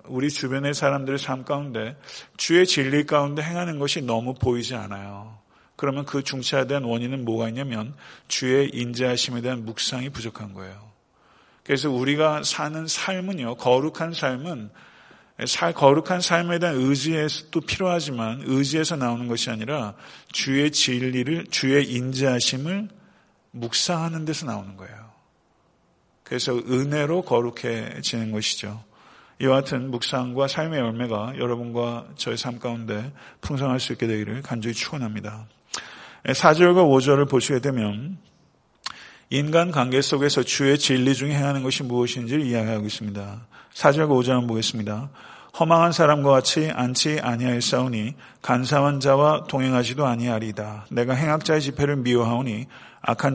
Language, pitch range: Korean, 120-145 Hz